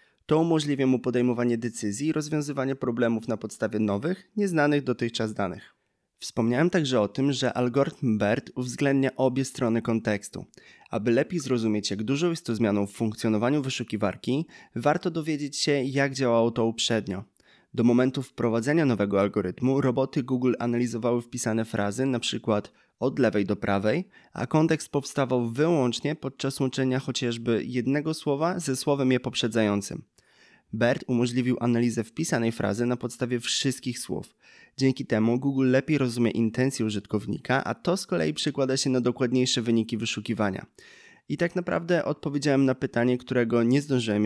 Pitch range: 115-135 Hz